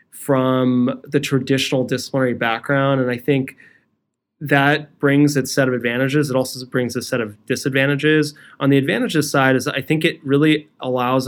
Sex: male